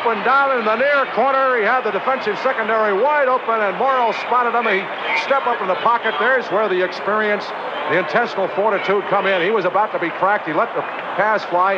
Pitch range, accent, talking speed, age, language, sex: 165-215 Hz, American, 220 wpm, 60-79, English, male